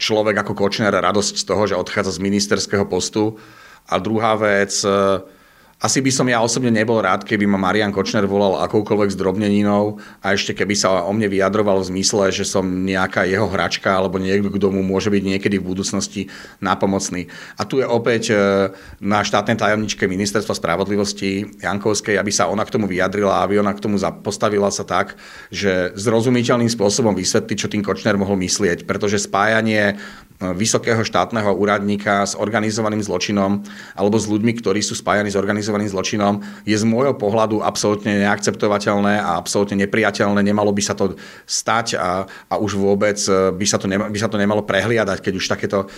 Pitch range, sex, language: 100-110 Hz, male, Slovak